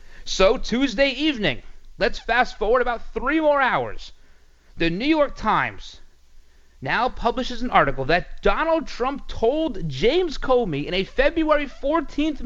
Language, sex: English, male